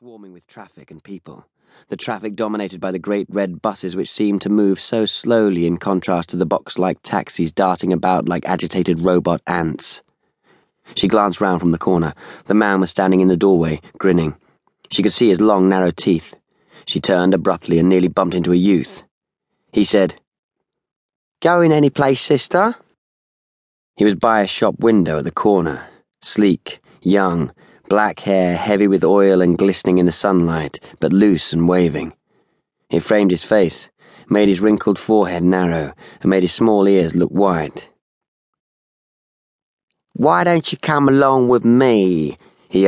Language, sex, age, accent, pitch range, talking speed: English, male, 20-39, British, 90-105 Hz, 165 wpm